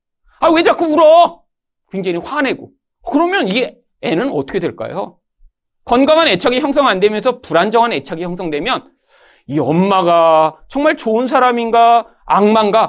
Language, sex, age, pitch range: Korean, male, 40-59, 190-280 Hz